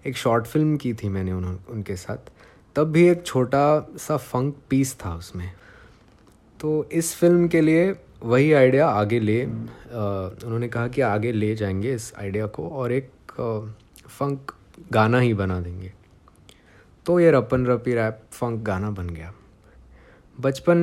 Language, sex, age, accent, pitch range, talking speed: Hindi, male, 20-39, native, 100-135 Hz, 155 wpm